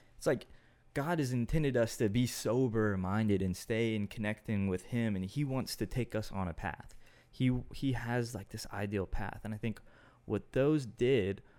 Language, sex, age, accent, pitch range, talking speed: English, male, 20-39, American, 95-115 Hz, 195 wpm